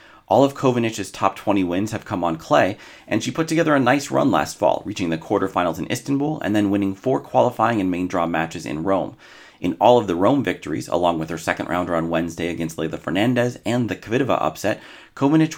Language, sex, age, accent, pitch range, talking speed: English, male, 30-49, American, 90-125 Hz, 215 wpm